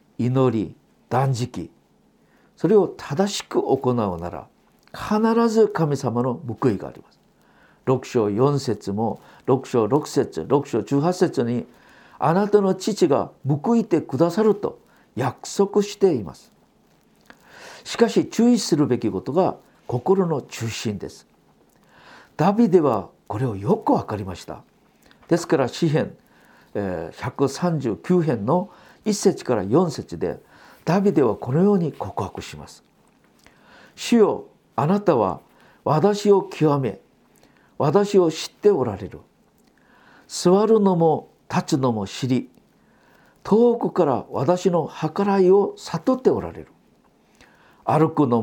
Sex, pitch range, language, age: male, 130-205 Hz, Japanese, 50-69